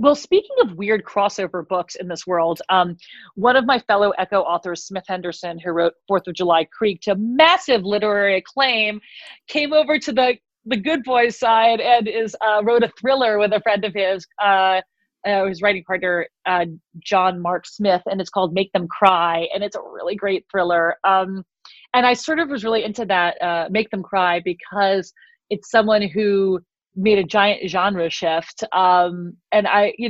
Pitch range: 175-215 Hz